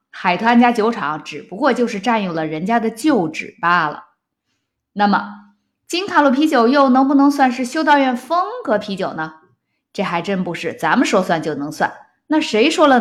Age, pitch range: 20-39, 185-275 Hz